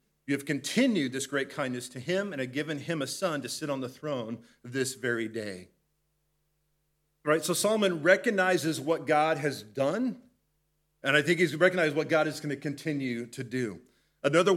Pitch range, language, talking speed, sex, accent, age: 135-160 Hz, English, 175 wpm, male, American, 40-59